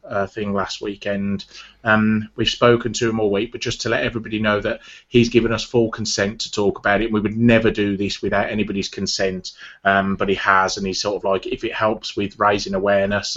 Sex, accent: male, British